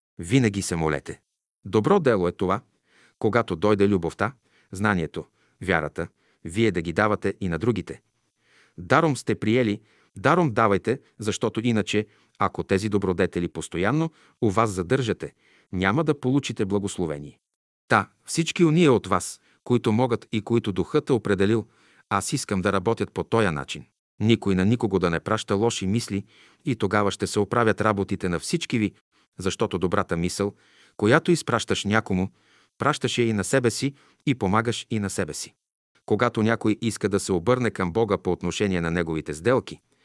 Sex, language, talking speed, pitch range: male, Bulgarian, 155 wpm, 95-120 Hz